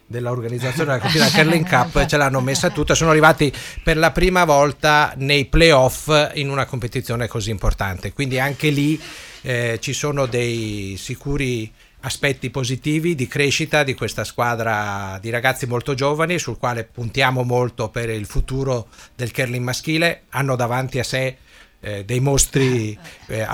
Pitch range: 115-140 Hz